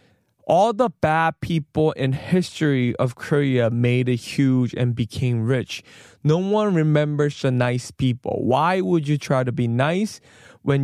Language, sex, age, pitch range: Korean, male, 20-39, 130-195 Hz